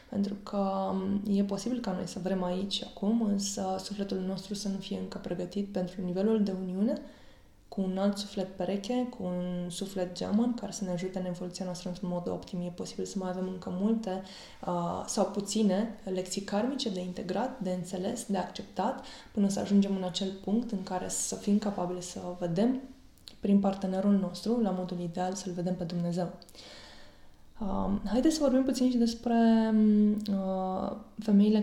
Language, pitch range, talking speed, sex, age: Romanian, 185-215 Hz, 170 wpm, female, 20-39